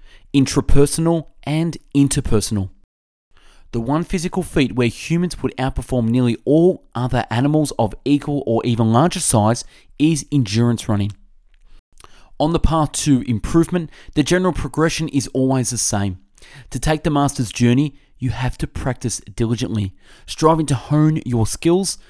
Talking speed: 140 wpm